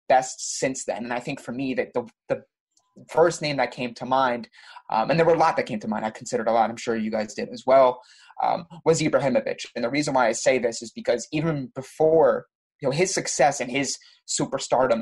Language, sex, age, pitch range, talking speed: English, male, 20-39, 120-155 Hz, 235 wpm